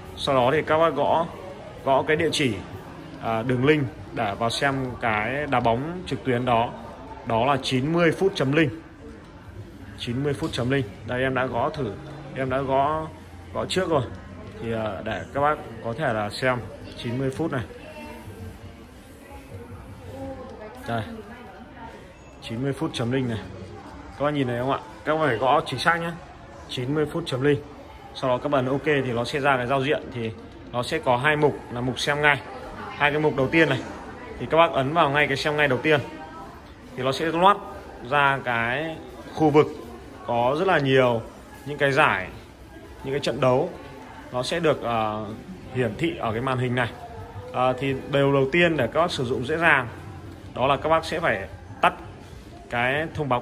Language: Vietnamese